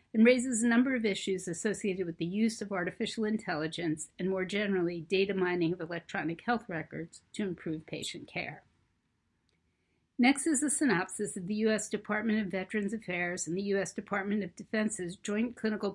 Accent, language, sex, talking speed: American, English, female, 170 wpm